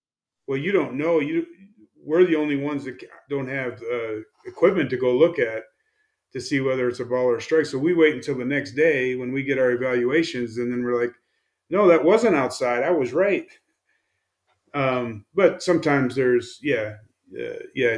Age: 30-49